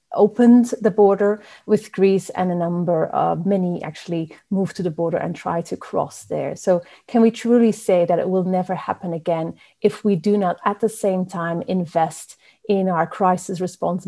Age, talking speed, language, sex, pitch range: 30-49, 190 wpm, English, female, 175-215 Hz